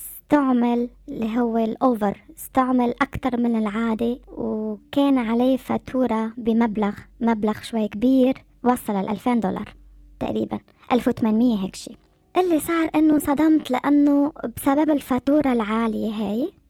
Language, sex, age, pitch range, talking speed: Arabic, male, 20-39, 225-280 Hz, 115 wpm